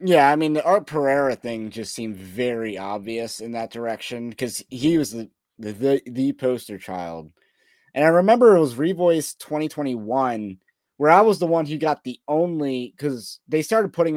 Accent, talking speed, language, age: American, 185 wpm, English, 30-49